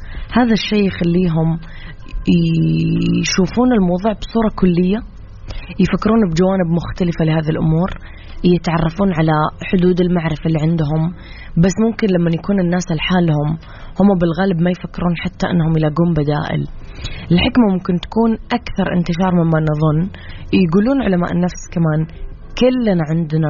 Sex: female